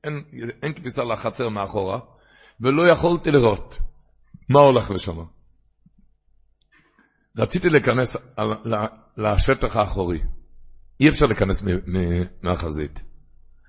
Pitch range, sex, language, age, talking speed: 95-130 Hz, male, Hebrew, 60-79, 80 wpm